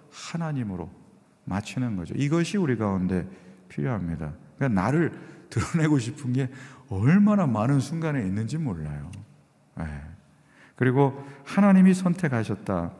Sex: male